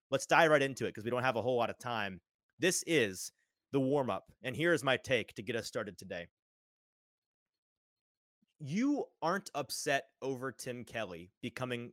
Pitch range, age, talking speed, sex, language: 110-135 Hz, 30-49, 180 wpm, male, English